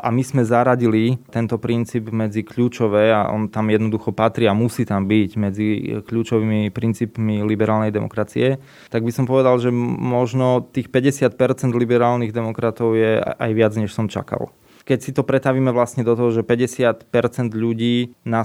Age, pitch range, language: 20-39, 110-125 Hz, Slovak